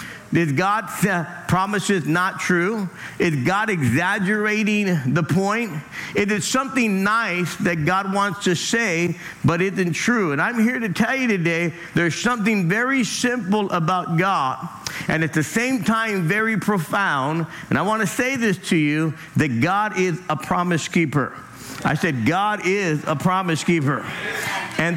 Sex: male